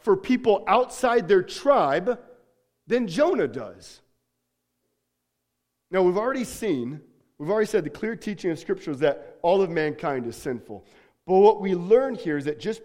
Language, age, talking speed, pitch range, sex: English, 40-59, 165 wpm, 150-215 Hz, male